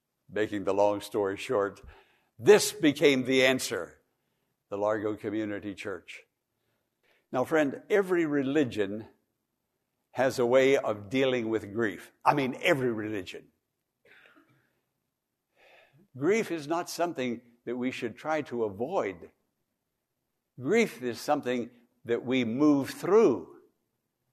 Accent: American